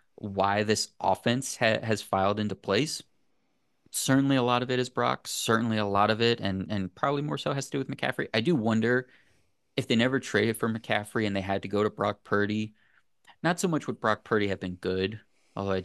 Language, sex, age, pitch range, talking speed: English, male, 20-39, 95-120 Hz, 215 wpm